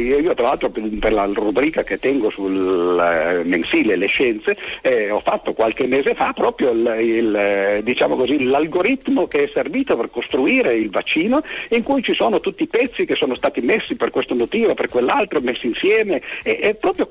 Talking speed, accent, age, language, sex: 180 wpm, native, 50-69, Italian, male